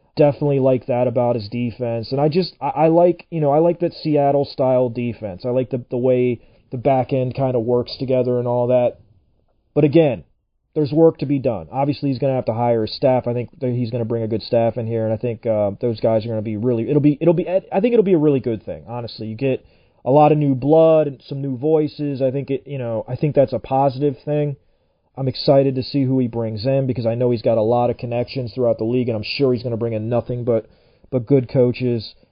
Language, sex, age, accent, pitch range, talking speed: English, male, 30-49, American, 120-140 Hz, 260 wpm